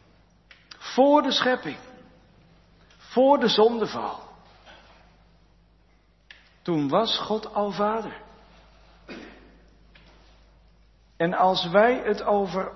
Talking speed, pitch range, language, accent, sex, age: 75 wpm, 155-215 Hz, Dutch, Dutch, male, 60-79